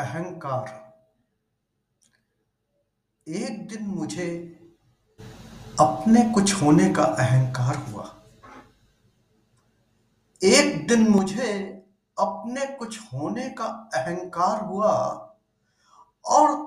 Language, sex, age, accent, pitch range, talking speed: Hindi, male, 60-79, native, 125-205 Hz, 70 wpm